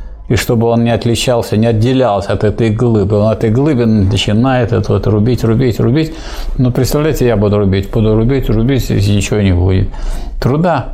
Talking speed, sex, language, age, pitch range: 185 wpm, male, Russian, 50-69, 100-130 Hz